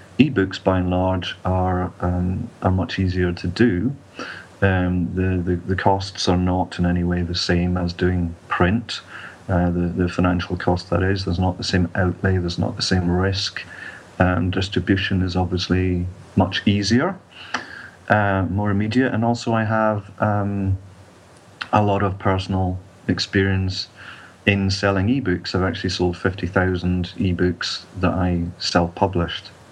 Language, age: English, 40-59